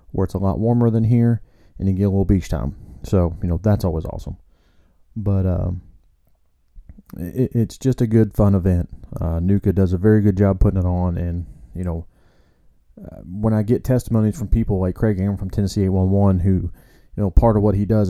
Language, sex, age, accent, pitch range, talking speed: English, male, 30-49, American, 95-110 Hz, 215 wpm